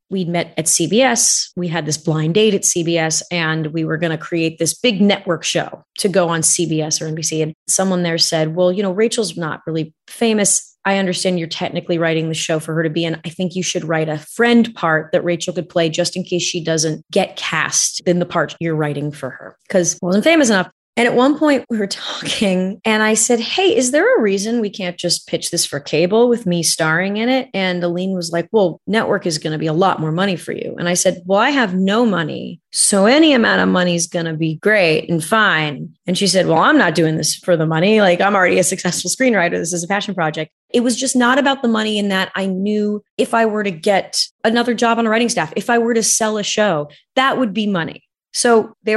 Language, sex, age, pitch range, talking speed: English, female, 30-49, 160-215 Hz, 245 wpm